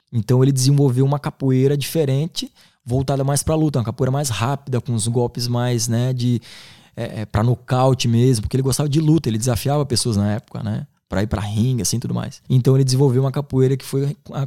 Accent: Brazilian